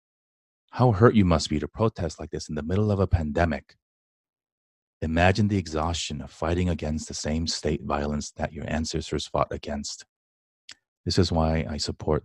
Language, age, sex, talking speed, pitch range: English, 30-49, male, 170 wpm, 75-90 Hz